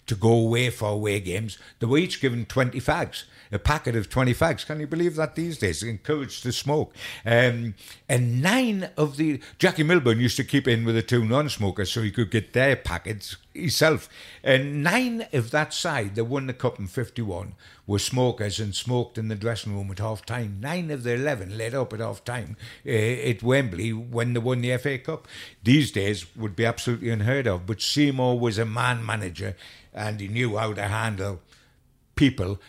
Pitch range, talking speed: 105-130 Hz, 190 wpm